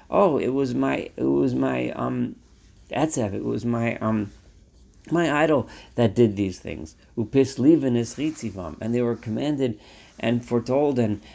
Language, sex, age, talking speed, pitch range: English, male, 40-59, 155 wpm, 80-120 Hz